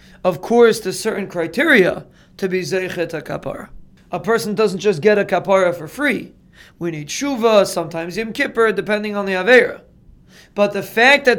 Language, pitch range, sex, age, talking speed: English, 185-230 Hz, male, 30-49, 170 wpm